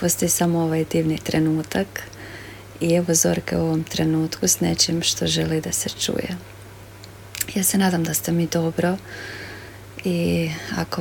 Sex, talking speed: female, 145 wpm